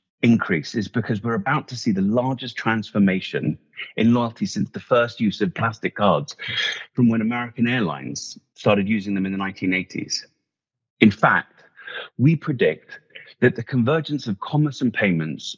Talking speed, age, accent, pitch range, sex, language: 155 wpm, 30-49, British, 105-140 Hz, male, English